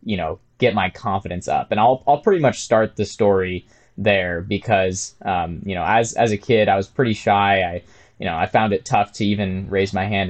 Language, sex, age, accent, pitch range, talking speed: English, male, 20-39, American, 100-115 Hz, 225 wpm